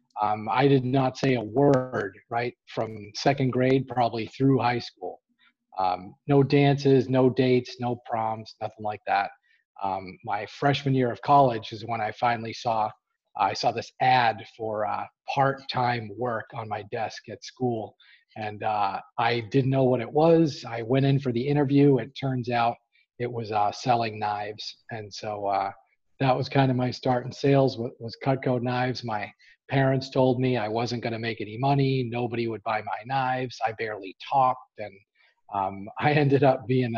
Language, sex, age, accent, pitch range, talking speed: English, male, 40-59, American, 110-135 Hz, 180 wpm